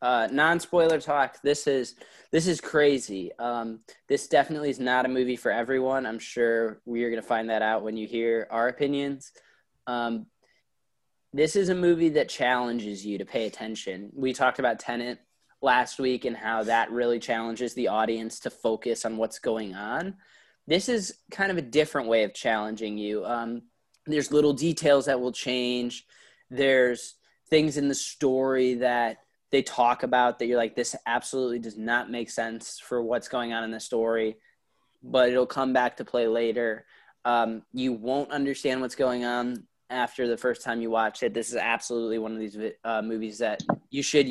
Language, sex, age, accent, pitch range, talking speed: English, male, 20-39, American, 115-135 Hz, 180 wpm